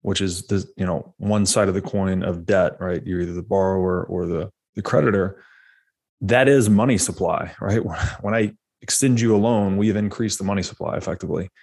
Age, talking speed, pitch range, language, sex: 20-39, 200 wpm, 95-115 Hz, English, male